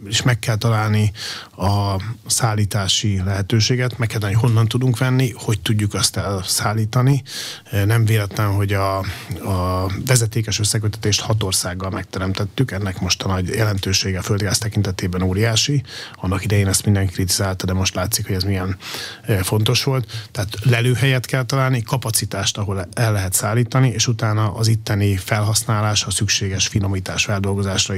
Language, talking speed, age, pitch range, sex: Hungarian, 140 wpm, 30-49, 100-120 Hz, male